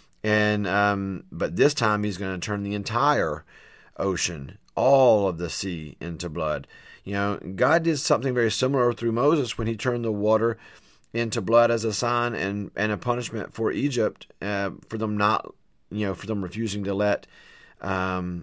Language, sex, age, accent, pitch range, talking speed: English, male, 40-59, American, 100-125 Hz, 180 wpm